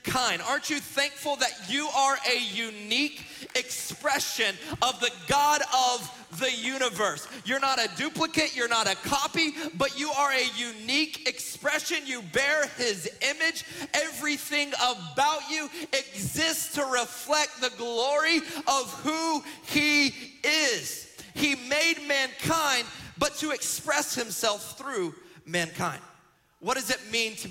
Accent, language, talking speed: American, English, 130 wpm